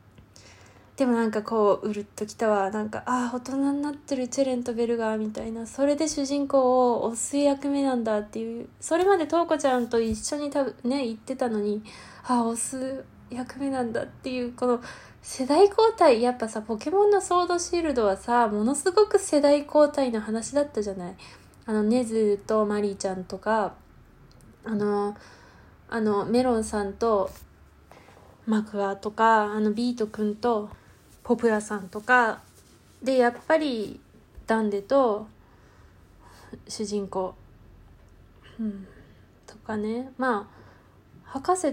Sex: female